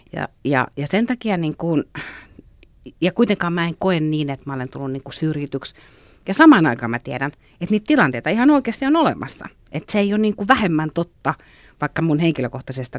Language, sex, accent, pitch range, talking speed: Finnish, female, native, 130-175 Hz, 195 wpm